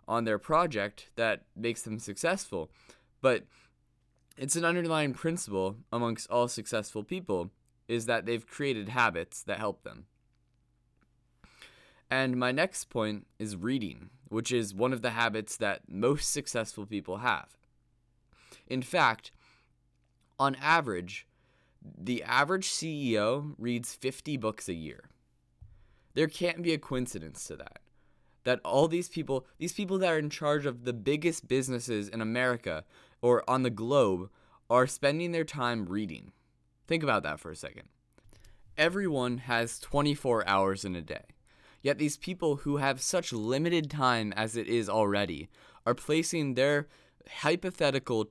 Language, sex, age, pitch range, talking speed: English, male, 20-39, 105-145 Hz, 140 wpm